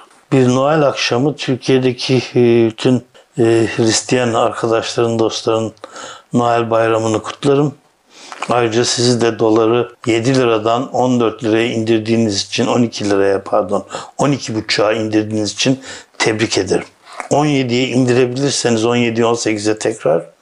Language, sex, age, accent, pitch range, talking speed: Turkish, male, 60-79, native, 115-130 Hz, 105 wpm